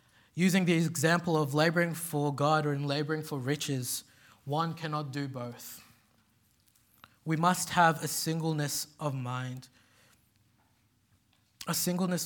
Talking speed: 120 wpm